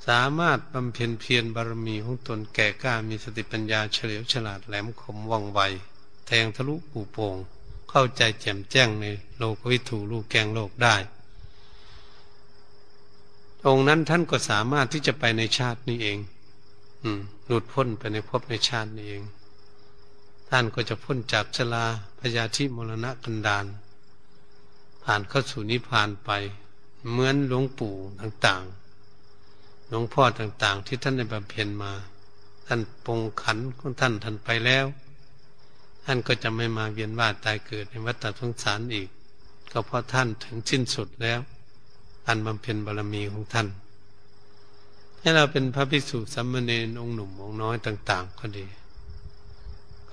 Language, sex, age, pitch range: Thai, male, 70-89, 105-125 Hz